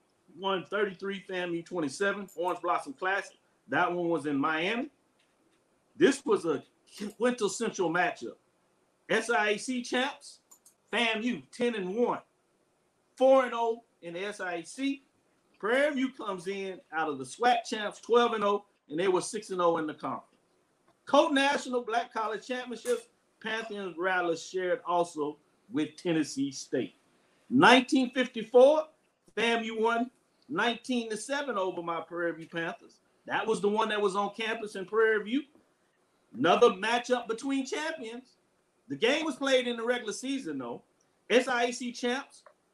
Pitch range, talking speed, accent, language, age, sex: 180-245 Hz, 130 wpm, American, English, 50-69, male